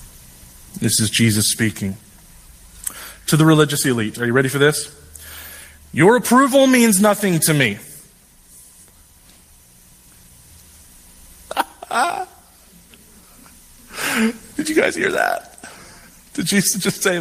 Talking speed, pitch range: 100 wpm, 100-150 Hz